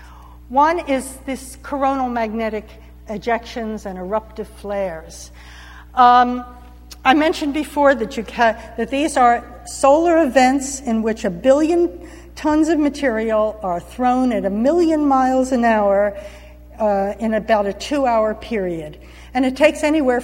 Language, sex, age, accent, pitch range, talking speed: English, female, 60-79, American, 205-260 Hz, 135 wpm